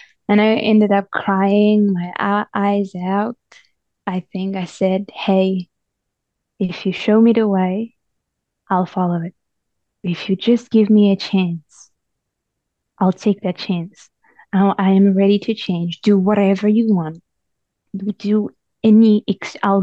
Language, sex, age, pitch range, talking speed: English, female, 20-39, 180-200 Hz, 135 wpm